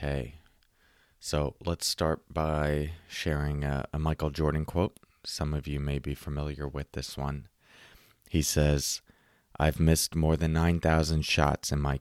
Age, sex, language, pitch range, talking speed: 30-49, male, English, 70-80 Hz, 150 wpm